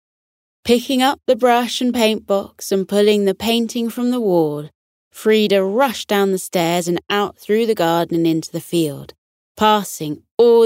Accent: British